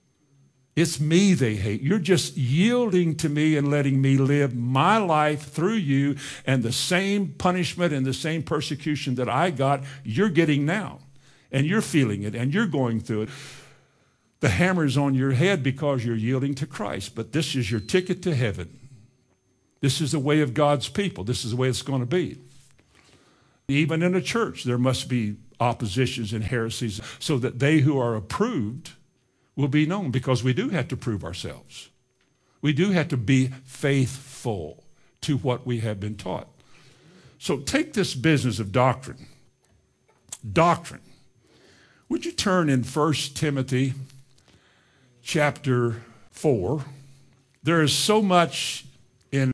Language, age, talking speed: English, 50-69, 155 wpm